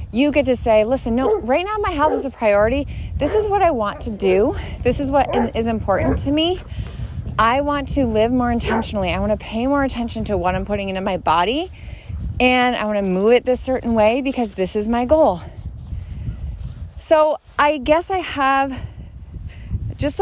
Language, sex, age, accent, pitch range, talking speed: English, female, 30-49, American, 210-280 Hz, 195 wpm